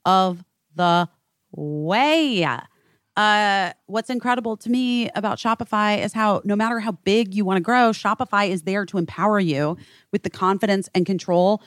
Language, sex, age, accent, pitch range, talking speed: English, female, 30-49, American, 180-250 Hz, 160 wpm